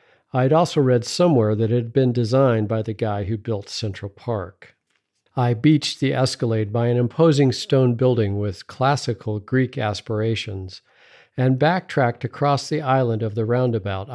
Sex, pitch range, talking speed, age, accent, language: male, 110-140 Hz, 155 wpm, 50-69, American, English